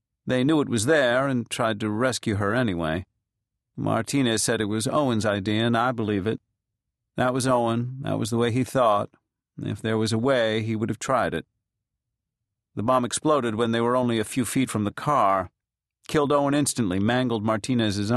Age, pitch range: 50-69, 105-125 Hz